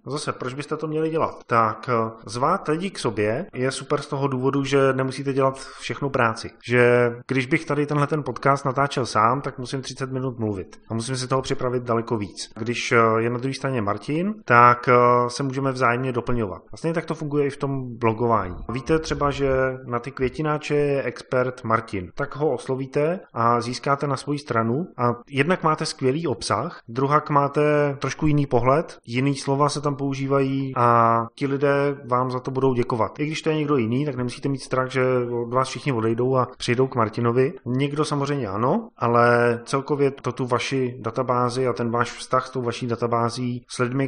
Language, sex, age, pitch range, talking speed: Czech, male, 30-49, 120-140 Hz, 190 wpm